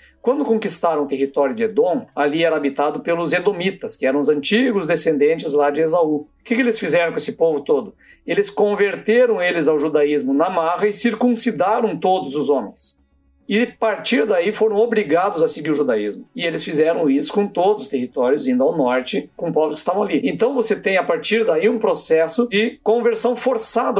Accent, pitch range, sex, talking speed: Brazilian, 165-235 Hz, male, 195 wpm